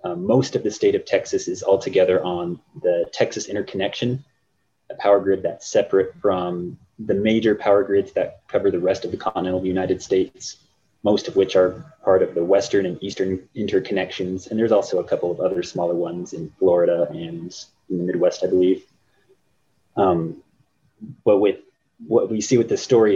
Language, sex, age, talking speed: English, male, 30-49, 180 wpm